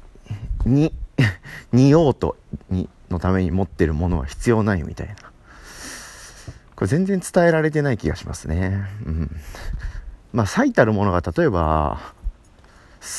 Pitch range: 80-125 Hz